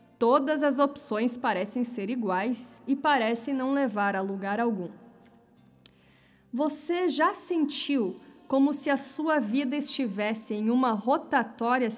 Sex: female